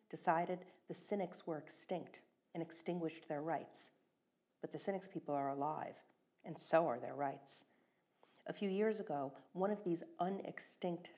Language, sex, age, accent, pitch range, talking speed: English, female, 50-69, American, 155-180 Hz, 150 wpm